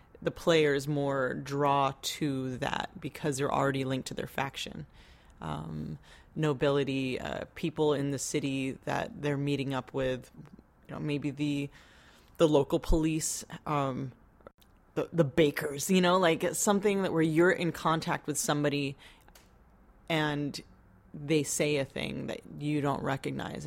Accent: American